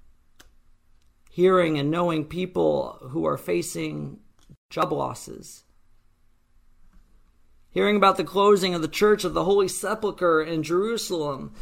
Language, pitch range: English, 110-170 Hz